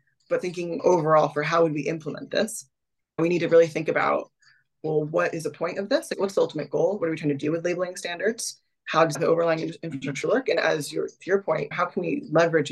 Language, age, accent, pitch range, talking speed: English, 20-39, American, 150-180 Hz, 245 wpm